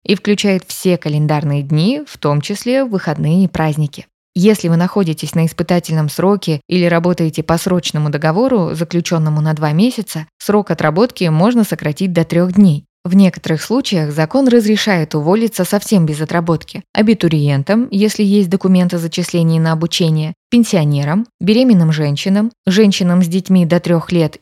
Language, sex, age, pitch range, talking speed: Russian, female, 20-39, 160-200 Hz, 145 wpm